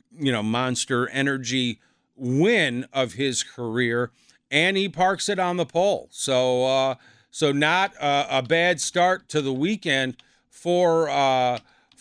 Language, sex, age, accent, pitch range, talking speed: English, male, 40-59, American, 130-160 Hz, 140 wpm